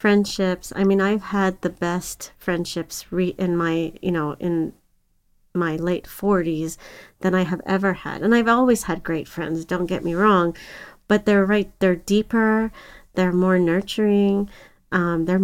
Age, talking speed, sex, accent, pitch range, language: 30-49, 165 wpm, female, American, 175-200 Hz, English